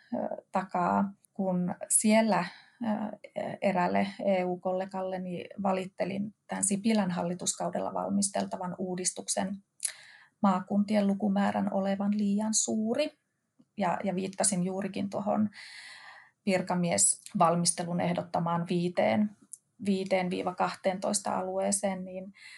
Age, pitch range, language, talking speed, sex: 30-49, 180-205 Hz, Finnish, 75 wpm, female